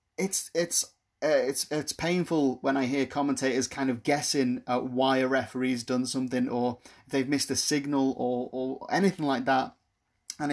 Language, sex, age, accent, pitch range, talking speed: English, male, 30-49, British, 130-165 Hz, 170 wpm